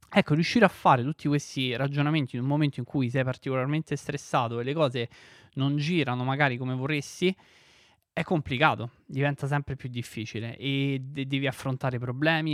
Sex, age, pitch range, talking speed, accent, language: male, 20-39, 125-145 Hz, 160 wpm, native, Italian